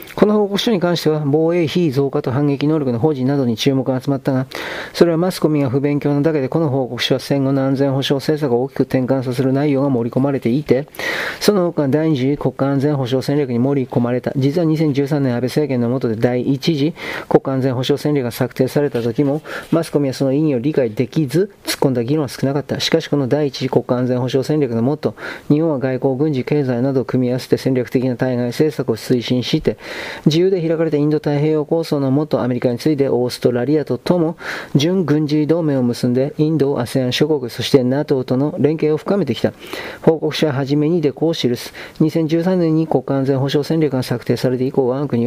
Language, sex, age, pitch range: Japanese, male, 40-59, 130-155 Hz